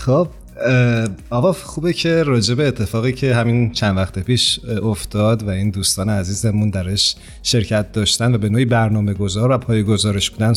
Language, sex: Persian, male